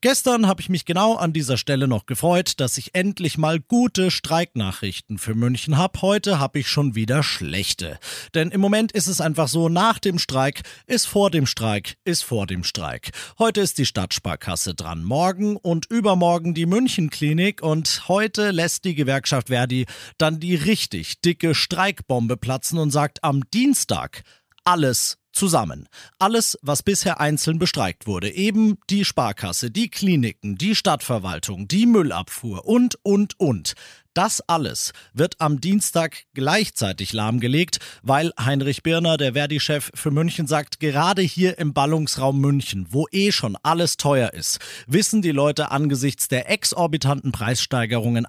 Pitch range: 120-180 Hz